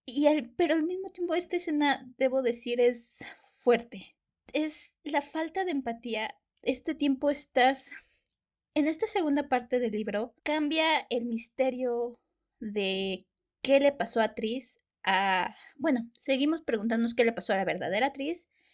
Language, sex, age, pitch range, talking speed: Spanish, female, 20-39, 230-280 Hz, 145 wpm